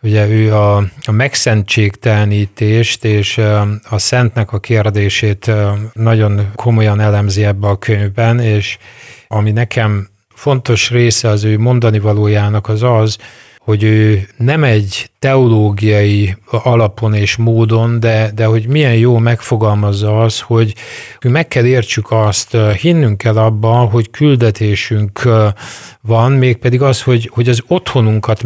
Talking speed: 125 wpm